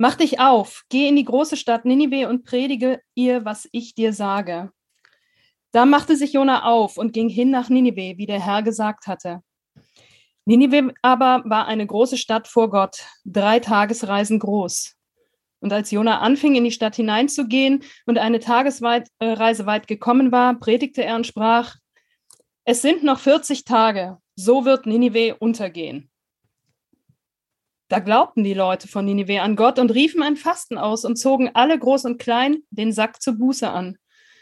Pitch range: 220-260 Hz